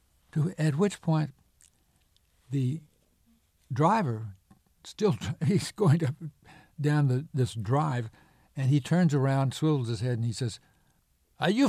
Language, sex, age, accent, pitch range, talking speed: English, male, 60-79, American, 115-155 Hz, 120 wpm